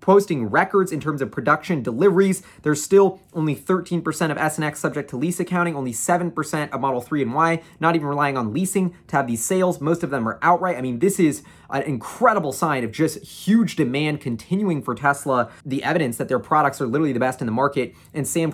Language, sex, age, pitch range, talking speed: English, male, 20-39, 135-165 Hz, 215 wpm